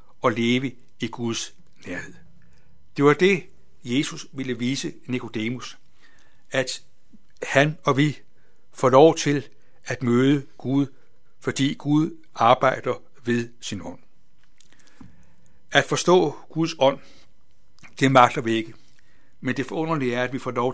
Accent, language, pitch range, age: native, Danish, 125-155 Hz, 60-79